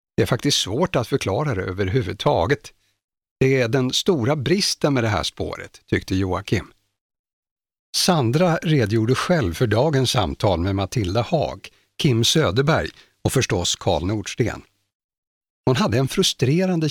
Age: 60-79